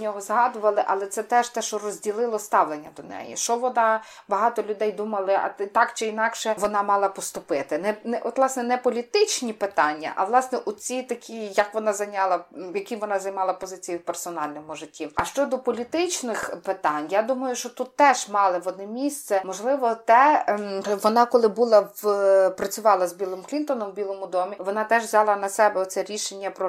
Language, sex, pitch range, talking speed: Ukrainian, female, 190-220 Hz, 180 wpm